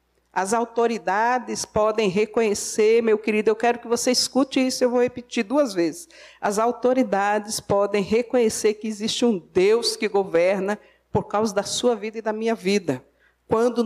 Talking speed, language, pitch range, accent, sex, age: 160 wpm, Portuguese, 195-245 Hz, Brazilian, female, 50-69